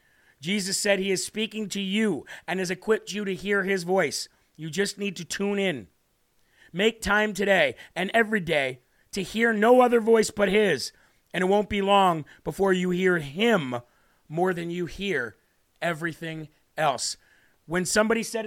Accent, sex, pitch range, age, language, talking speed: American, male, 185-220 Hz, 40-59, English, 170 wpm